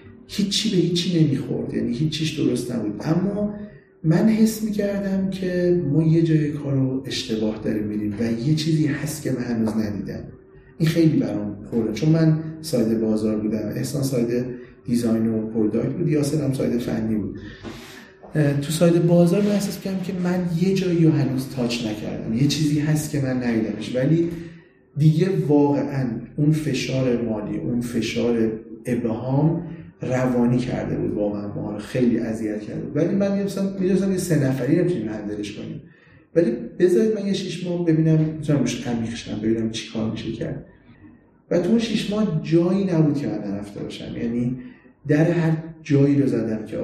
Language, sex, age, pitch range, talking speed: Persian, male, 40-59, 115-165 Hz, 165 wpm